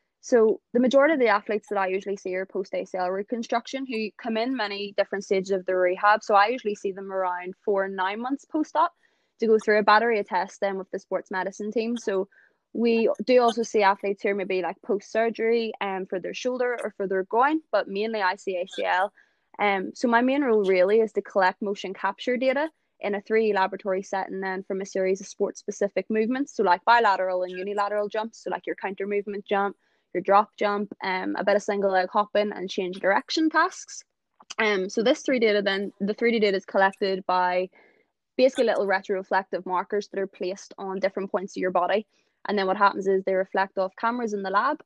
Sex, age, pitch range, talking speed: female, 20-39, 190-225 Hz, 215 wpm